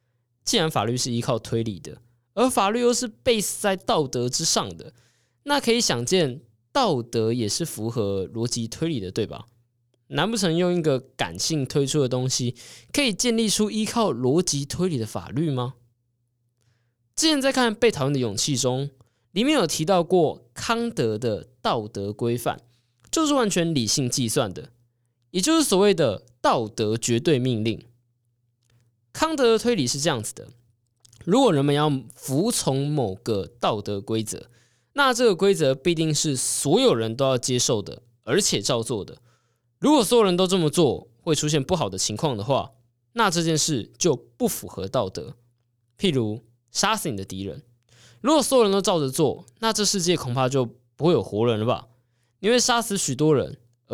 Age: 20-39